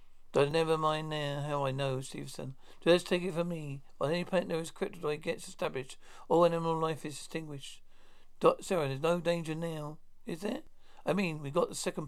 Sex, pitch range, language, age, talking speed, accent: male, 145-175 Hz, English, 60-79, 205 wpm, British